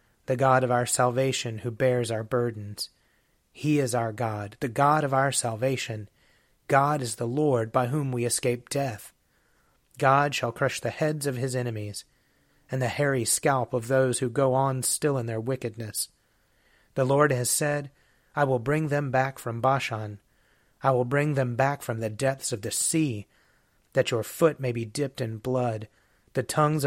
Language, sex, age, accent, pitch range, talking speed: English, male, 30-49, American, 120-145 Hz, 180 wpm